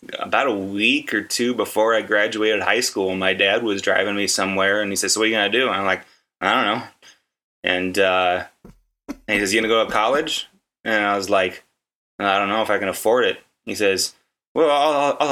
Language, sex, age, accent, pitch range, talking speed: English, male, 20-39, American, 95-110 Hz, 225 wpm